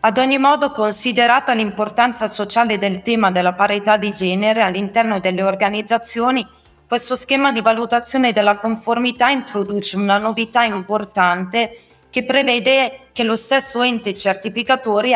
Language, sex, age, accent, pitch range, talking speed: Italian, female, 20-39, native, 185-230 Hz, 125 wpm